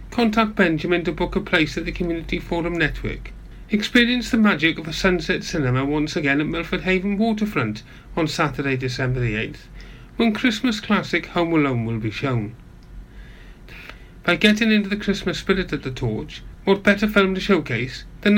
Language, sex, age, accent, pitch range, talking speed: English, male, 40-59, British, 140-195 Hz, 165 wpm